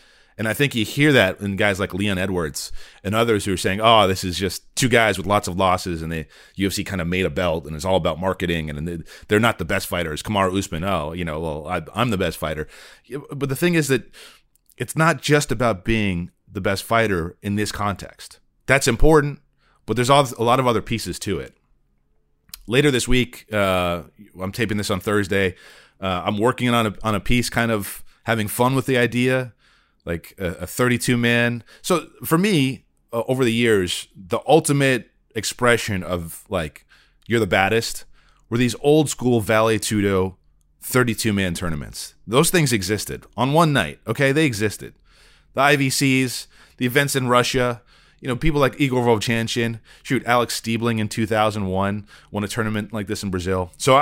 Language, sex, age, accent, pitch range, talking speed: English, male, 30-49, American, 95-125 Hz, 185 wpm